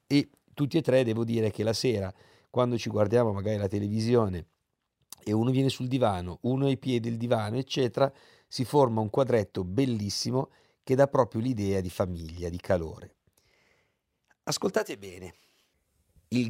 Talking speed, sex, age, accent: 155 wpm, male, 50-69, native